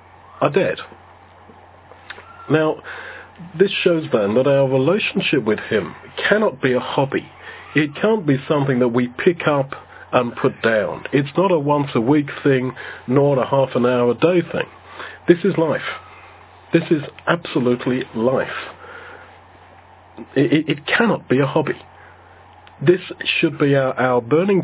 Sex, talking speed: male, 150 wpm